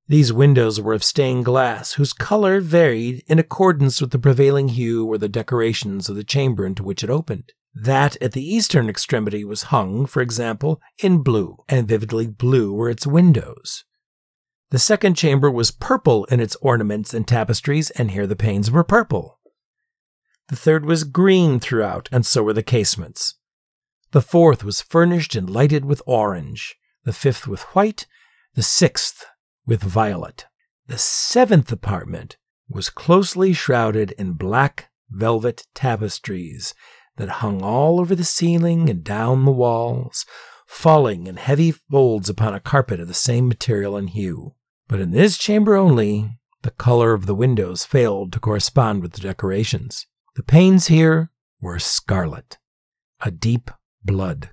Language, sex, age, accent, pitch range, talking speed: English, male, 50-69, American, 110-155 Hz, 155 wpm